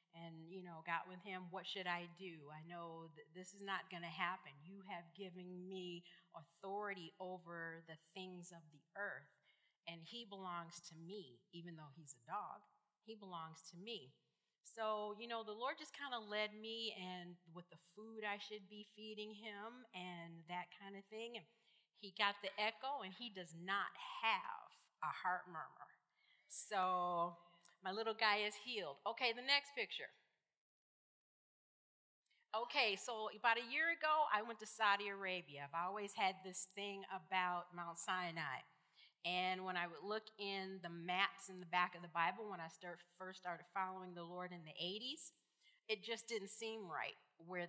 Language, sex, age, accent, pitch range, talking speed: English, female, 40-59, American, 175-215 Hz, 175 wpm